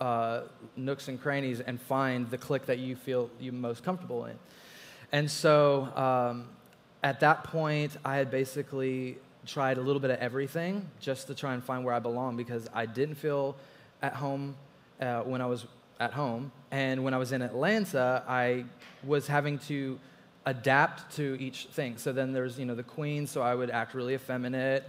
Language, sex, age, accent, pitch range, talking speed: English, male, 20-39, American, 125-140 Hz, 185 wpm